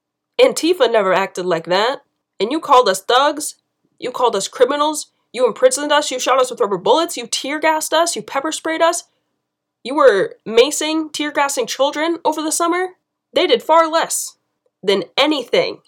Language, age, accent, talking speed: English, 20-39, American, 165 wpm